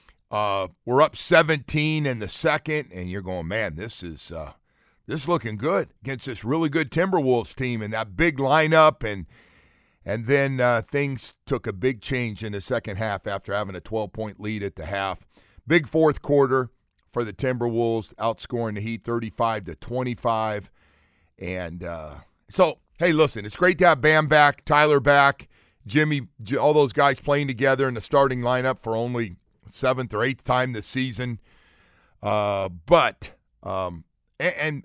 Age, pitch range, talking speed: 40-59, 105-145 Hz, 165 wpm